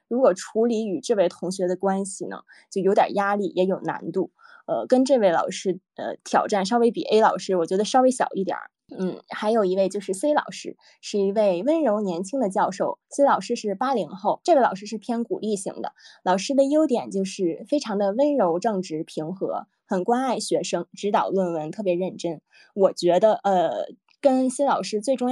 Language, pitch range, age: Chinese, 190-245 Hz, 20-39